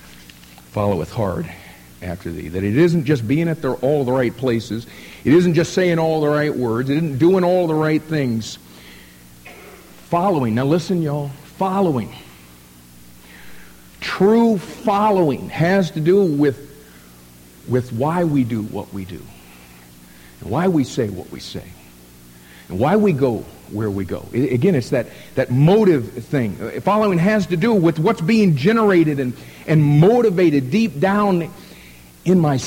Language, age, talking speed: English, 50-69, 150 wpm